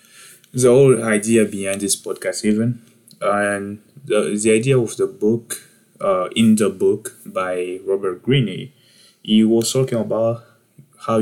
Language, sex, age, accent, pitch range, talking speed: English, male, 20-39, French, 95-120 Hz, 140 wpm